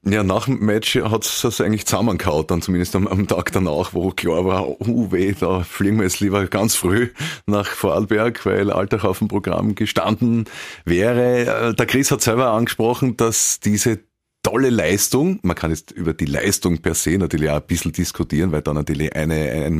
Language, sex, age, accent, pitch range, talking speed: German, male, 30-49, Austrian, 85-110 Hz, 185 wpm